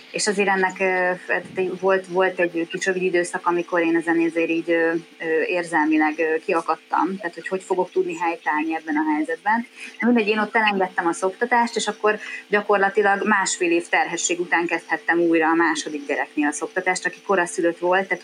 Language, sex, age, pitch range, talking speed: Hungarian, female, 30-49, 155-185 Hz, 160 wpm